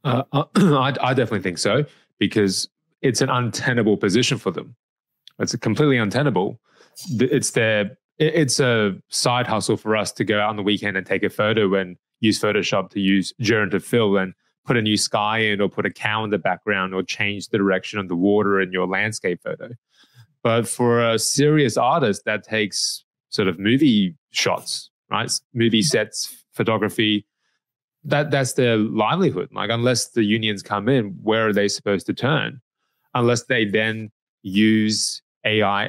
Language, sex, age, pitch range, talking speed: English, male, 20-39, 105-125 Hz, 170 wpm